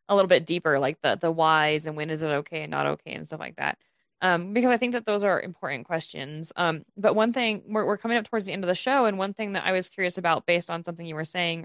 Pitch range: 155-190 Hz